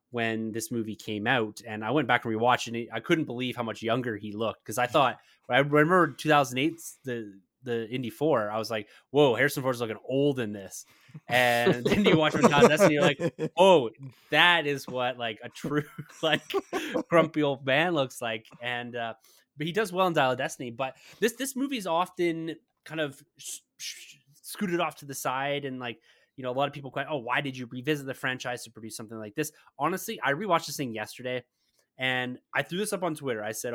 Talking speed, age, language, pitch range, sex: 220 wpm, 20-39, English, 120-155 Hz, male